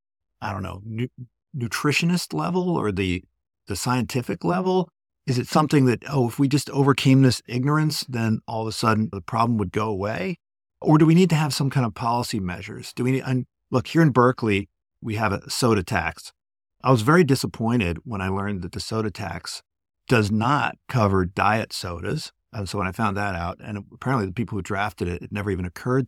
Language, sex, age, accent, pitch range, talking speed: English, male, 50-69, American, 100-135 Hz, 205 wpm